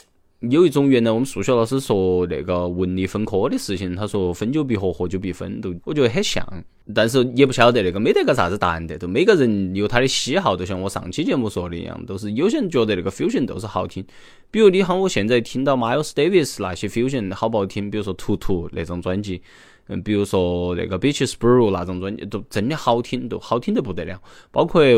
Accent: native